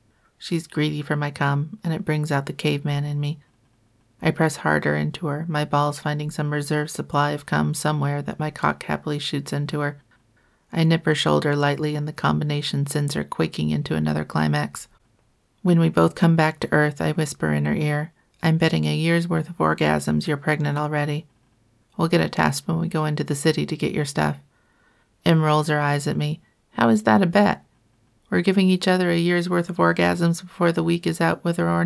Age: 40-59